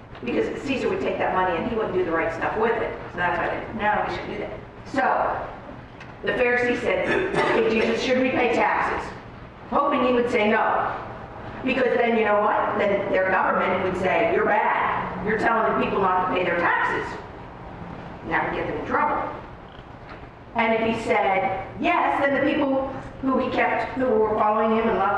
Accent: American